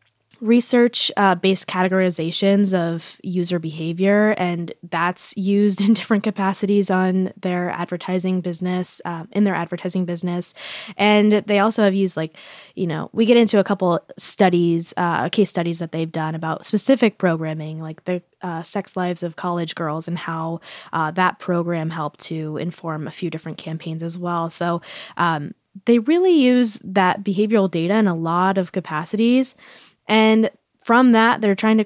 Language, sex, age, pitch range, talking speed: English, female, 10-29, 170-205 Hz, 160 wpm